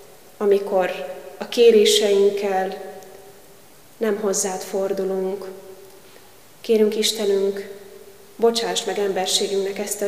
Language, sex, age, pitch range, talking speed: Hungarian, female, 20-39, 195-215 Hz, 75 wpm